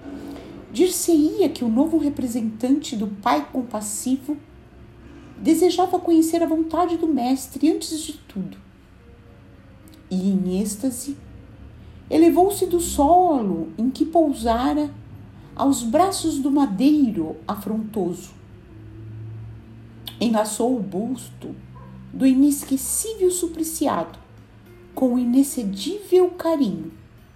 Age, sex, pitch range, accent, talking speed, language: 50-69, female, 195-310 Hz, Brazilian, 90 wpm, Portuguese